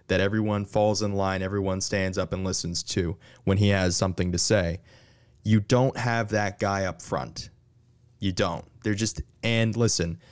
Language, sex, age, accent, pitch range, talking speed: English, male, 20-39, American, 95-115 Hz, 175 wpm